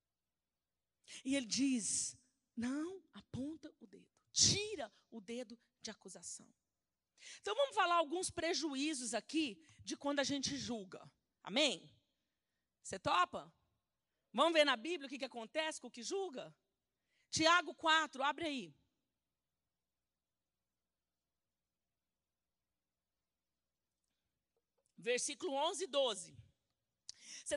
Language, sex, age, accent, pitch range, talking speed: Portuguese, female, 40-59, Brazilian, 240-360 Hz, 100 wpm